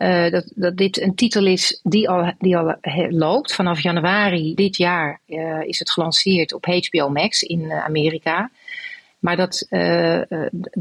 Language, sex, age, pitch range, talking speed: Dutch, female, 40-59, 165-195 Hz, 160 wpm